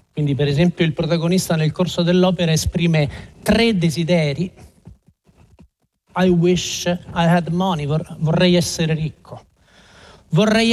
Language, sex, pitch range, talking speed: Italian, male, 145-190 Hz, 110 wpm